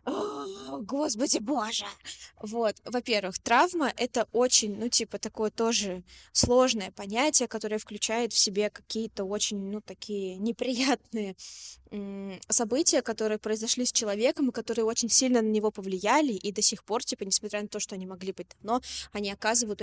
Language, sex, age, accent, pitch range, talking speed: Russian, female, 20-39, native, 210-245 Hz, 150 wpm